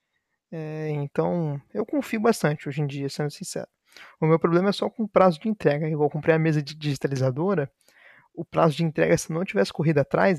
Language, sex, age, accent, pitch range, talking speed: Portuguese, male, 20-39, Brazilian, 145-180 Hz, 200 wpm